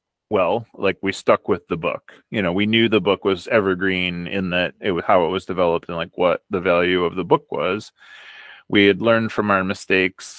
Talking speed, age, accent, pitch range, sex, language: 220 wpm, 30-49, American, 95-115 Hz, male, English